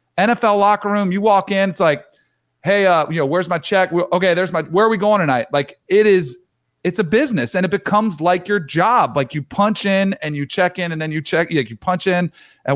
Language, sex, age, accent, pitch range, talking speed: English, male, 40-59, American, 150-190 Hz, 240 wpm